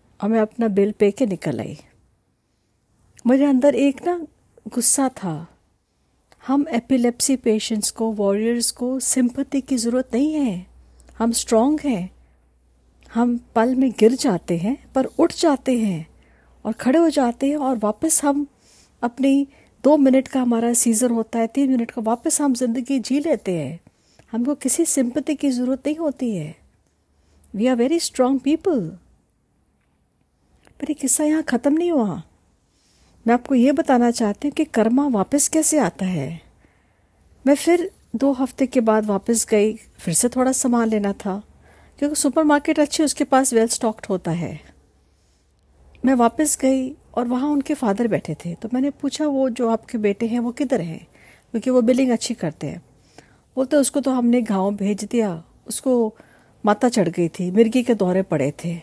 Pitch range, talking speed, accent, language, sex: 200-275 Hz, 165 wpm, native, Hindi, female